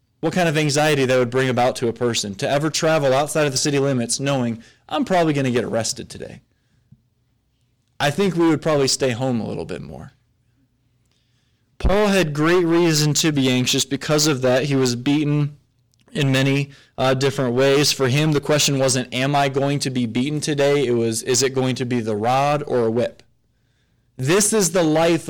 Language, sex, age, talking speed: English, male, 20-39, 200 wpm